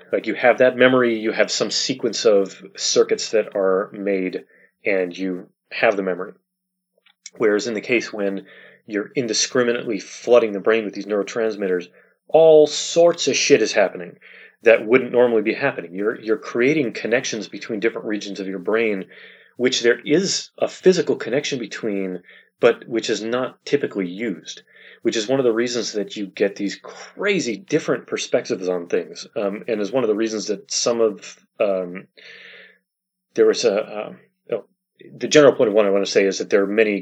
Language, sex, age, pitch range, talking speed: Bulgarian, male, 30-49, 100-145 Hz, 180 wpm